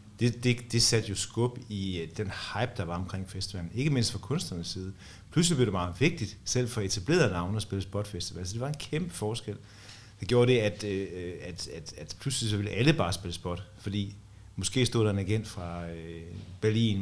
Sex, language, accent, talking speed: male, Danish, native, 205 wpm